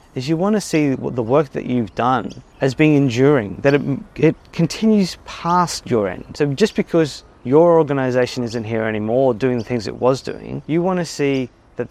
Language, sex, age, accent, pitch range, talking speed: English, male, 30-49, Australian, 120-150 Hz, 190 wpm